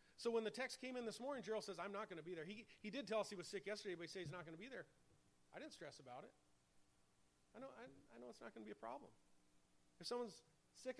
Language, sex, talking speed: English, male, 295 wpm